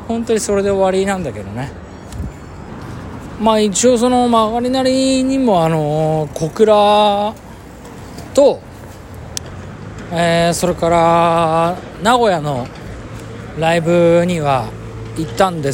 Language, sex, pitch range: Japanese, male, 150-235 Hz